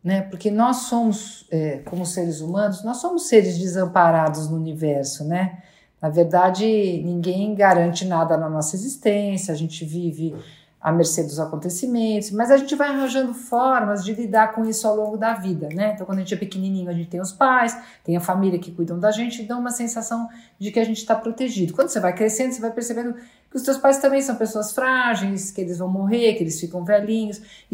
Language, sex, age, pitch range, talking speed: Portuguese, female, 50-69, 180-230 Hz, 205 wpm